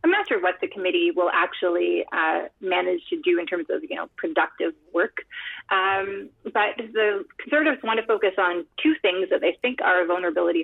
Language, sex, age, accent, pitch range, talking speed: English, female, 30-49, American, 180-250 Hz, 195 wpm